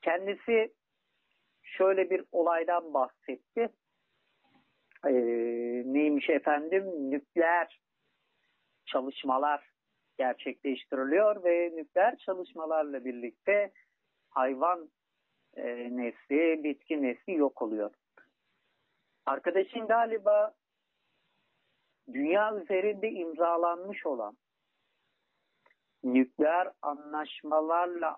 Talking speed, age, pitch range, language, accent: 65 wpm, 50-69, 145-220 Hz, Turkish, native